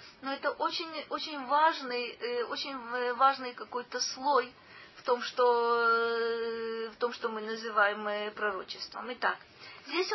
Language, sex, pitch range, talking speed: Russian, female, 230-305 Hz, 110 wpm